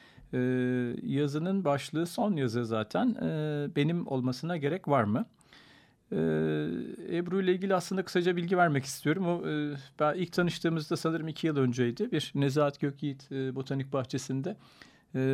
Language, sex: Turkish, male